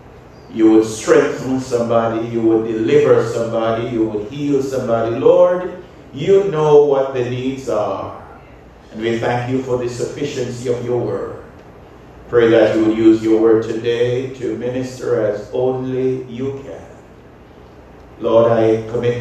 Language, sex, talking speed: English, male, 145 wpm